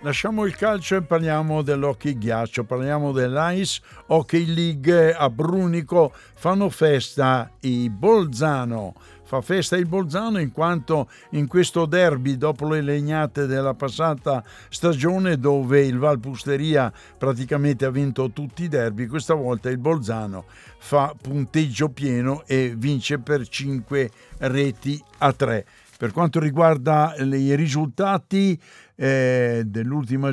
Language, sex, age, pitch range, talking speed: Italian, male, 60-79, 125-160 Hz, 125 wpm